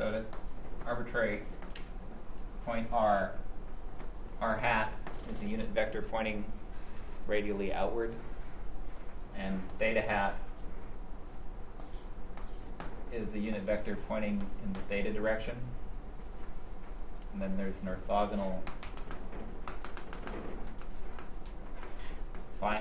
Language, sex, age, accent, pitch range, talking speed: English, male, 30-49, American, 95-105 Hz, 80 wpm